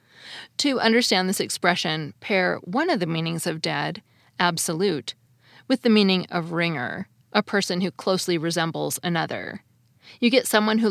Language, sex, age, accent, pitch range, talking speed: English, female, 20-39, American, 160-195 Hz, 150 wpm